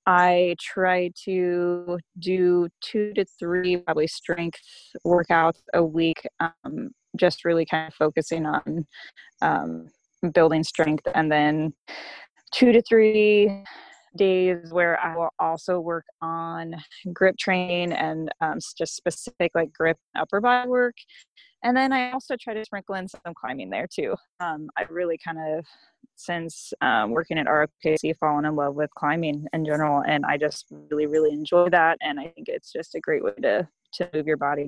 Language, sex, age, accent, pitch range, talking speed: English, female, 20-39, American, 155-195 Hz, 165 wpm